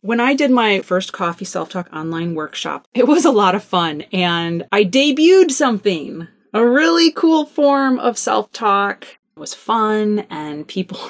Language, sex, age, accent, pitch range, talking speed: English, female, 30-49, American, 195-280 Hz, 160 wpm